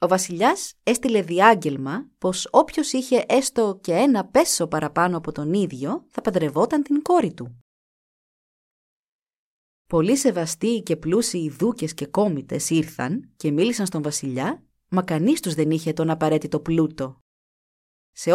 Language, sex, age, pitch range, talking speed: Greek, female, 30-49, 160-255 Hz, 135 wpm